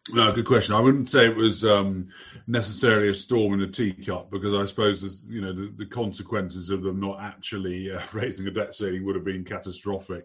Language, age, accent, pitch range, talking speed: English, 30-49, British, 95-105 Hz, 215 wpm